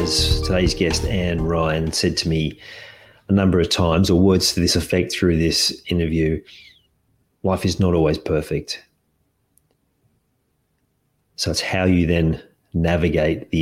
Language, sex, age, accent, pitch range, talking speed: English, male, 40-59, Australian, 80-95 Hz, 140 wpm